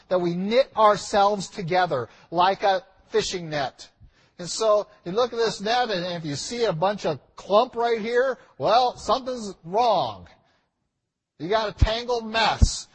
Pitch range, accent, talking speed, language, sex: 155-215 Hz, American, 160 wpm, English, male